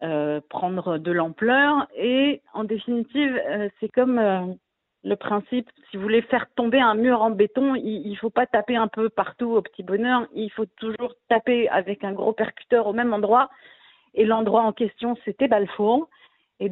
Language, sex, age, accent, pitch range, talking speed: French, female, 40-59, French, 180-225 Hz, 185 wpm